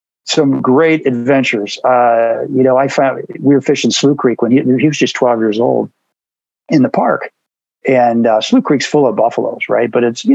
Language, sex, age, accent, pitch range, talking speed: English, male, 50-69, American, 115-140 Hz, 205 wpm